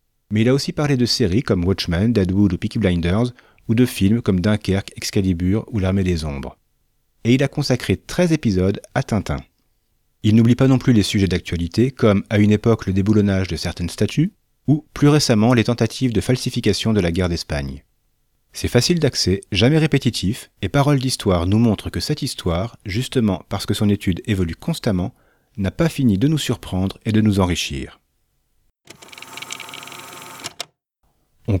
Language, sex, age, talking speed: French, male, 40-59, 170 wpm